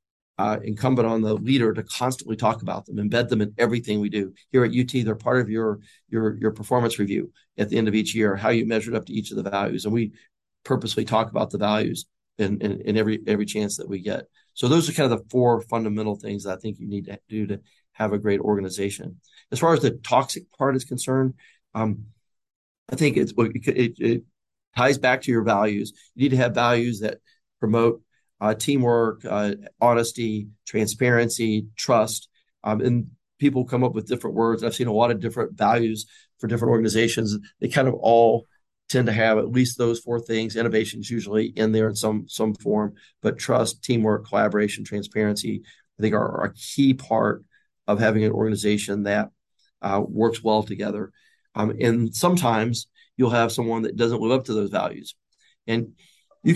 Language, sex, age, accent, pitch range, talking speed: English, male, 40-59, American, 105-125 Hz, 195 wpm